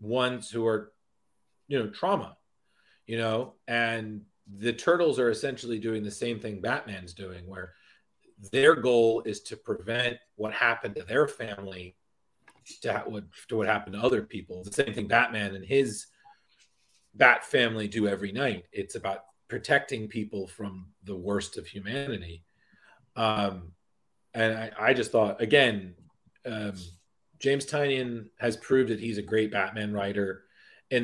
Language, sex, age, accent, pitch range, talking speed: English, male, 30-49, American, 105-140 Hz, 150 wpm